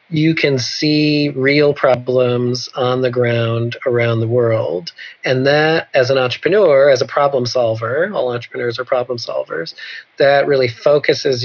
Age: 40-59